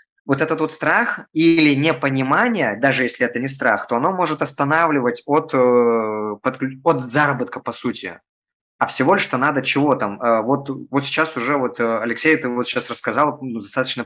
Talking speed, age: 160 wpm, 20-39